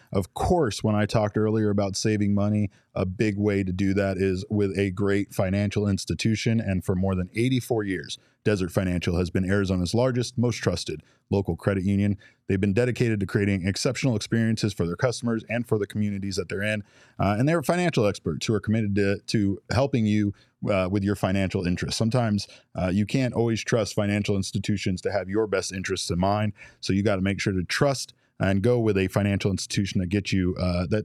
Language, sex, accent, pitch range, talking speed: English, male, American, 95-115 Hz, 205 wpm